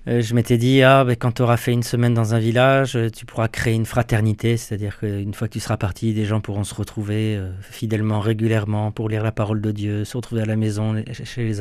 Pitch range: 110-125 Hz